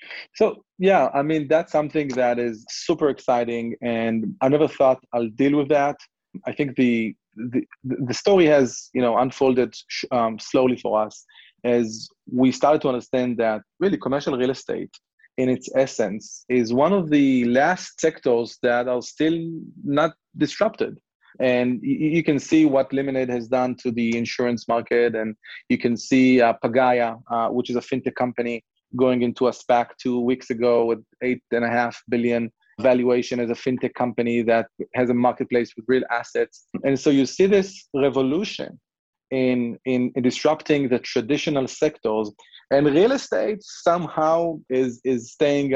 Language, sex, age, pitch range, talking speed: English, male, 30-49, 120-140 Hz, 155 wpm